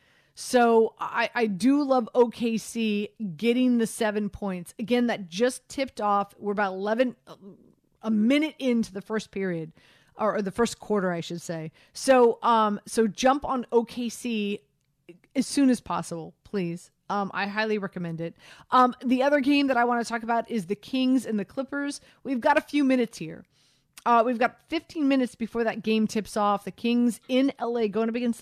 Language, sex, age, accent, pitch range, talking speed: English, female, 40-59, American, 205-240 Hz, 180 wpm